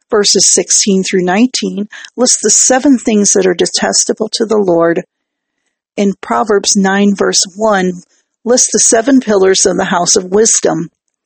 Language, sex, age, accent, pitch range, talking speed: English, female, 50-69, American, 180-230 Hz, 145 wpm